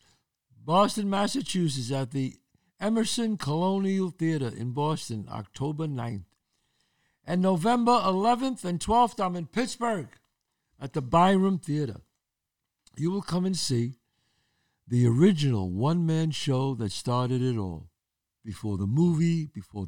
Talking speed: 120 wpm